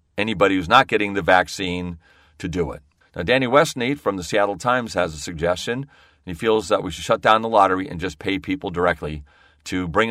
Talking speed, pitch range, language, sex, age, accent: 210 wpm, 85-125 Hz, English, male, 40-59, American